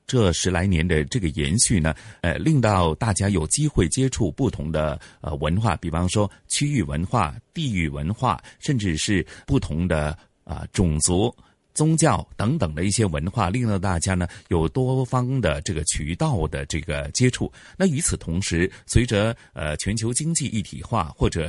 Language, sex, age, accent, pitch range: Chinese, male, 30-49, native, 85-125 Hz